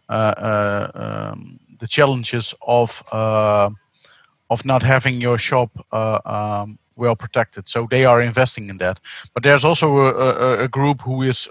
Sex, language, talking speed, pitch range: male, English, 155 wpm, 110-130 Hz